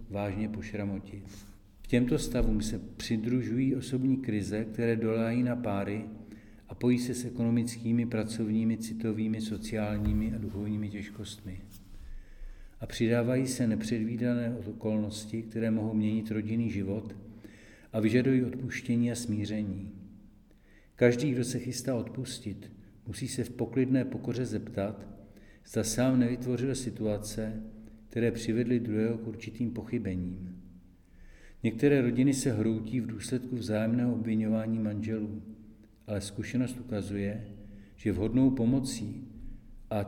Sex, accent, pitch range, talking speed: male, native, 105-120 Hz, 115 wpm